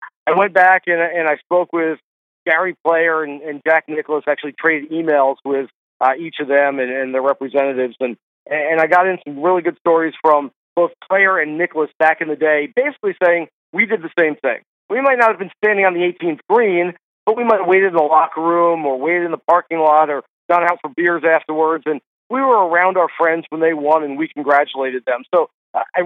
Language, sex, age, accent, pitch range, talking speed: English, male, 40-59, American, 150-175 Hz, 225 wpm